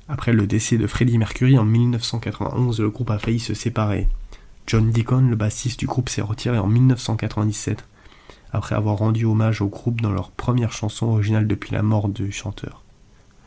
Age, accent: 20-39, French